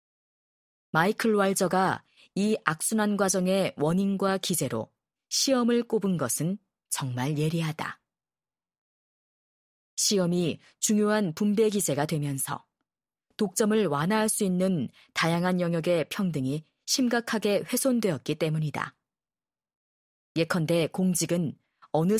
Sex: female